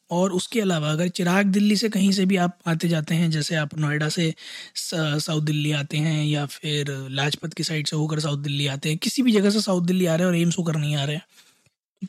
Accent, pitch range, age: native, 155-190 Hz, 20-39